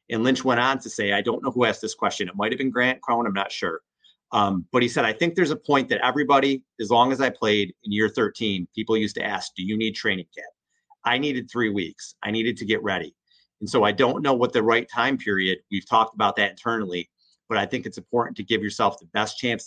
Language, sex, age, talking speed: English, male, 40-59, 260 wpm